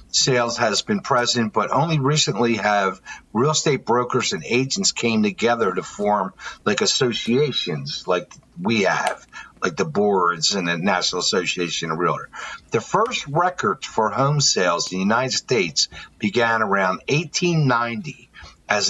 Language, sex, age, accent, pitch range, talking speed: English, male, 50-69, American, 110-160 Hz, 145 wpm